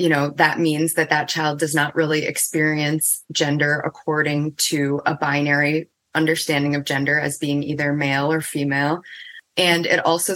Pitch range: 145-165 Hz